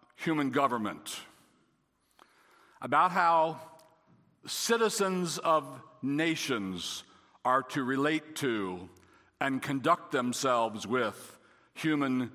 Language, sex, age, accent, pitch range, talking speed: English, male, 60-79, American, 115-155 Hz, 80 wpm